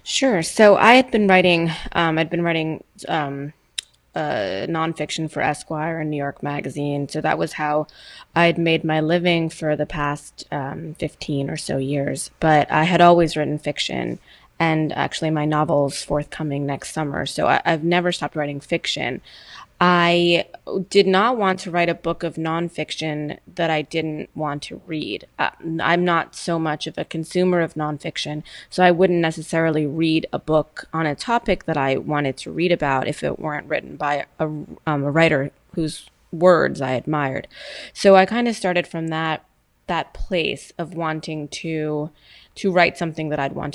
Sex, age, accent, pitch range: female, 20-39, American, 150-175 Hz